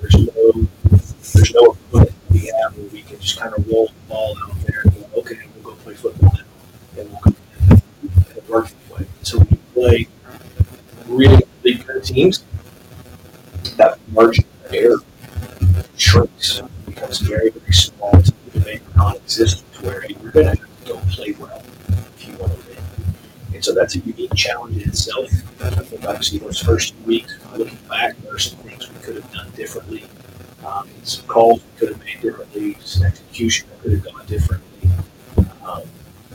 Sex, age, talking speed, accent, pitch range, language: male, 40-59, 175 wpm, American, 95-115 Hz, English